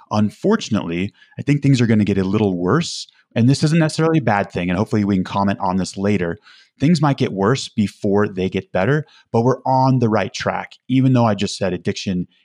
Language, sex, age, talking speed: English, male, 30-49, 220 wpm